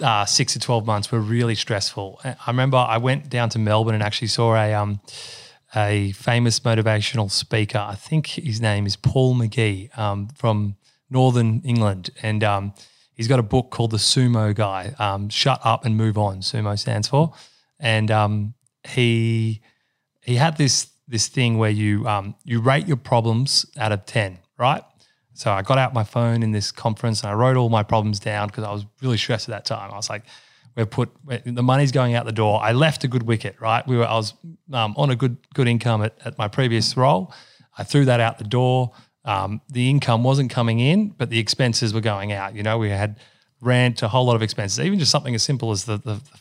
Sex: male